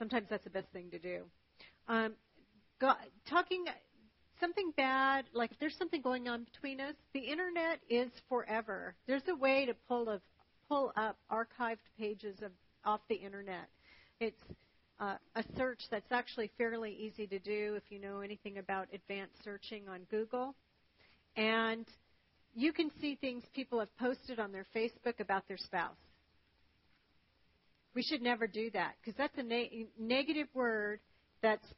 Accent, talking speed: American, 150 wpm